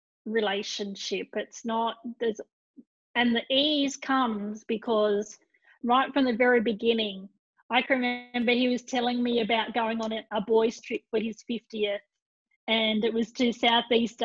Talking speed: 145 wpm